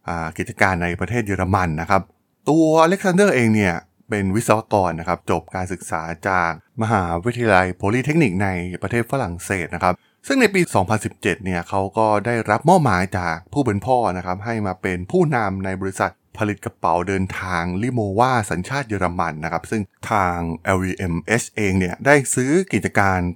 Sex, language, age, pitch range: male, Thai, 20-39, 90-120 Hz